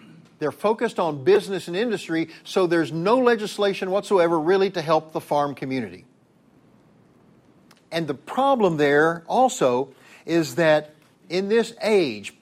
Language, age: English, 50-69